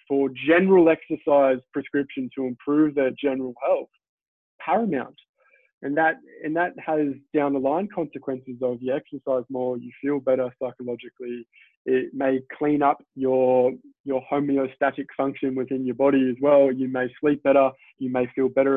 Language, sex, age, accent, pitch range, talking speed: English, male, 20-39, Australian, 130-155 Hz, 155 wpm